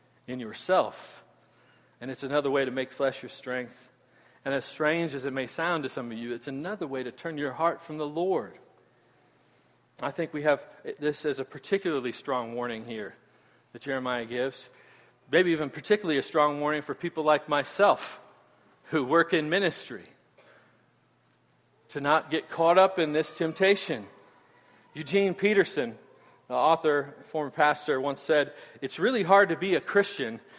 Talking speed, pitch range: 165 wpm, 140-180 Hz